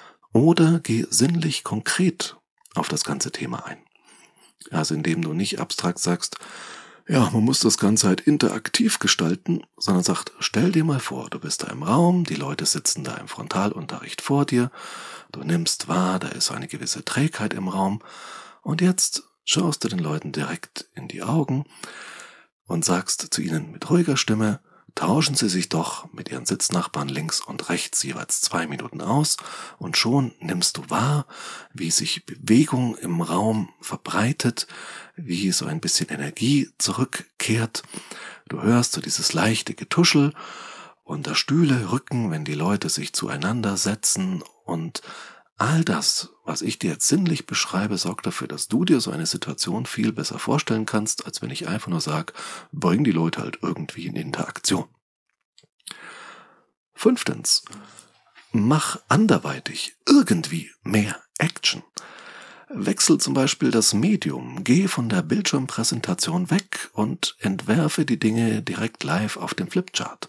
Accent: German